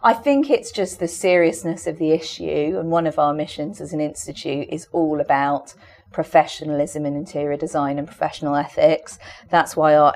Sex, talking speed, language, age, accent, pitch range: female, 175 wpm, English, 40-59, British, 145-165 Hz